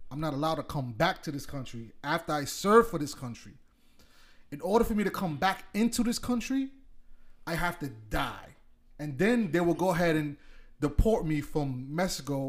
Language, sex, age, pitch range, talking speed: English, male, 30-49, 120-165 Hz, 190 wpm